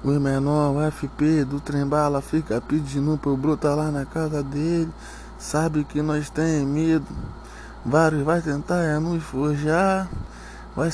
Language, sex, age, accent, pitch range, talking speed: English, male, 20-39, Brazilian, 155-175 Hz, 155 wpm